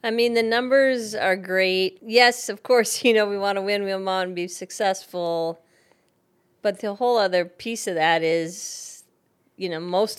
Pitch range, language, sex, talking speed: 170-195 Hz, English, female, 185 wpm